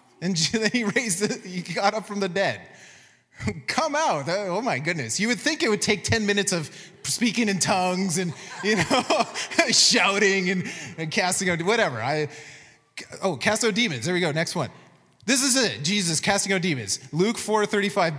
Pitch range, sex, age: 150-205 Hz, male, 20-39